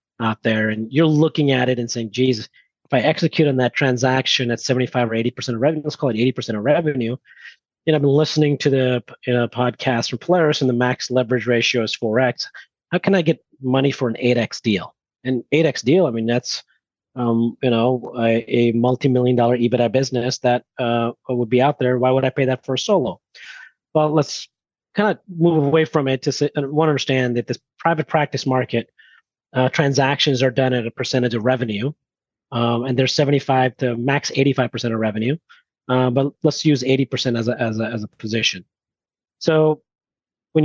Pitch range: 120-145 Hz